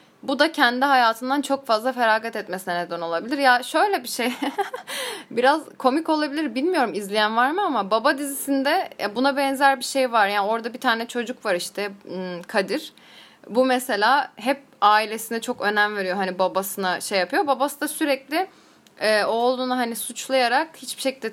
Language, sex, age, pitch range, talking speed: Turkish, female, 10-29, 195-275 Hz, 160 wpm